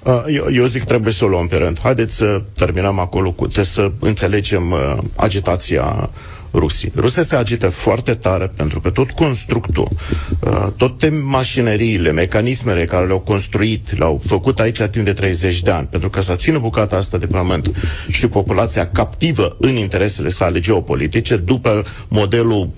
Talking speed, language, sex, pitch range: 160 wpm, Romanian, male, 95-120 Hz